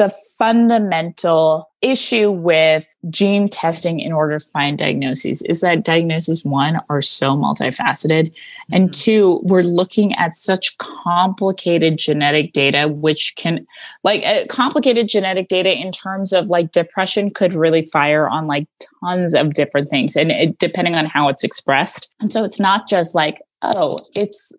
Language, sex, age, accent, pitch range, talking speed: English, female, 20-39, American, 155-195 Hz, 155 wpm